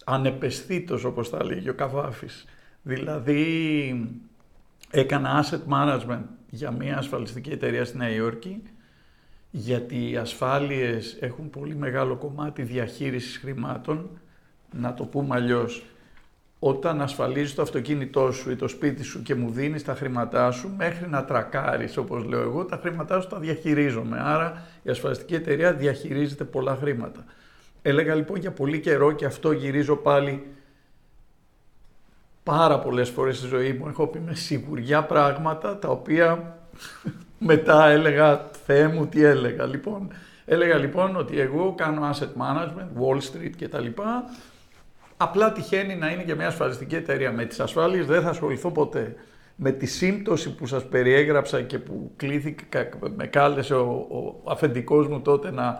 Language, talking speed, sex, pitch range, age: Greek, 145 wpm, male, 130-155 Hz, 50-69